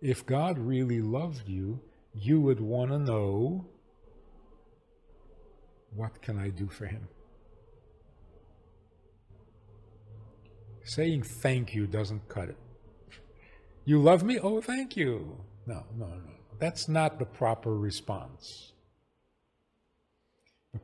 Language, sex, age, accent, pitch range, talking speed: English, male, 50-69, American, 110-155 Hz, 105 wpm